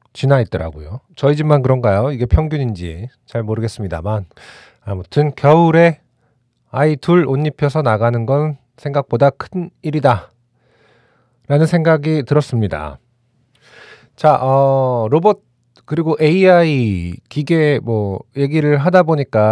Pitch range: 115-150 Hz